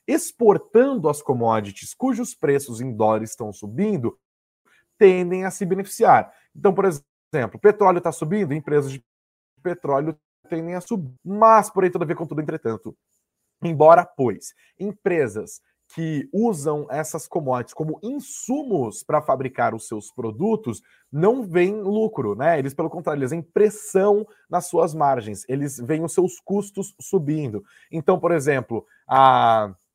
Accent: Brazilian